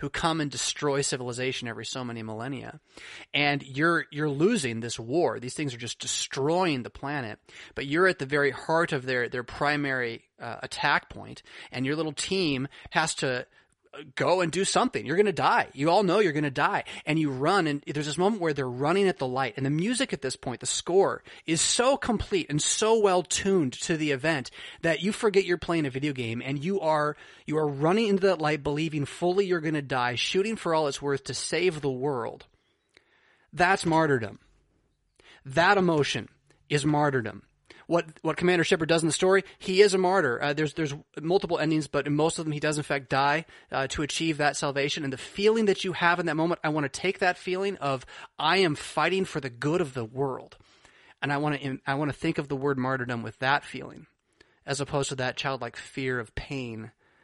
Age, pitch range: 30-49, 130-170 Hz